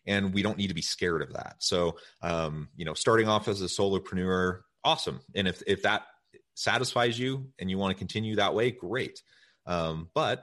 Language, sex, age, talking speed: English, male, 30-49, 200 wpm